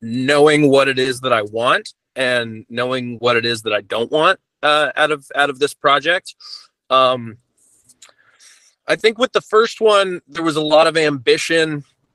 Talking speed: 180 wpm